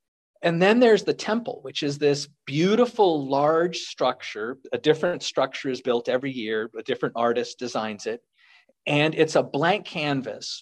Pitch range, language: 125-155 Hz, English